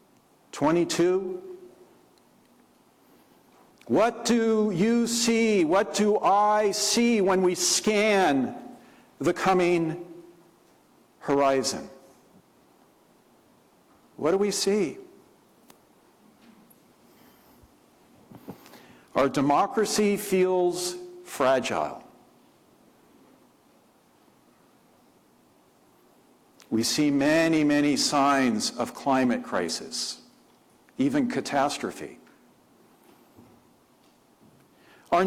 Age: 50-69